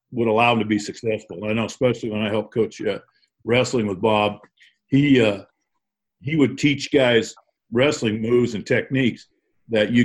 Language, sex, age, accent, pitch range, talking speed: English, male, 50-69, American, 110-130 Hz, 180 wpm